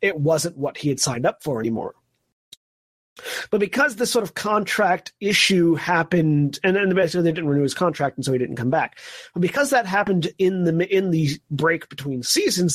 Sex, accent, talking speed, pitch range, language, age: male, American, 200 wpm, 140-185 Hz, English, 30-49